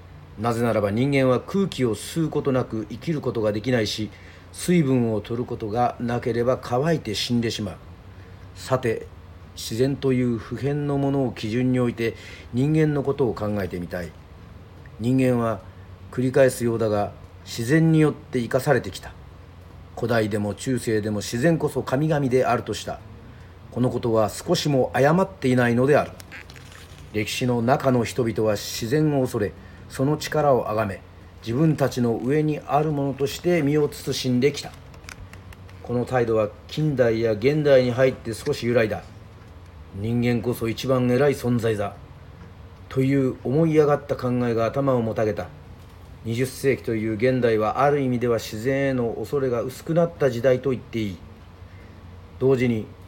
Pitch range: 95-130 Hz